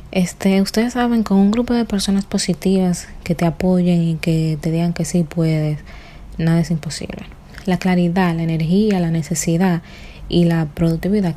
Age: 20-39